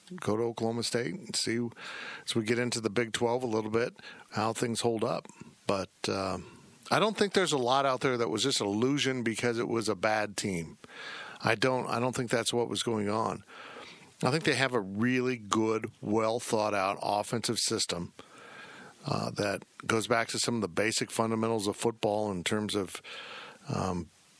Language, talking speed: English, 195 wpm